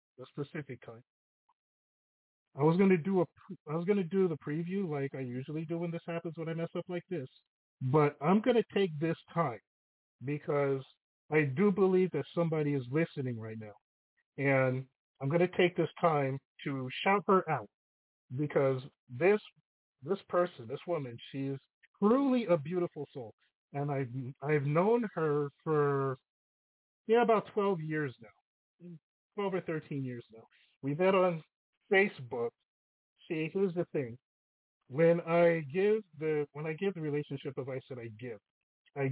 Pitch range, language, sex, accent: 130-175 Hz, English, male, American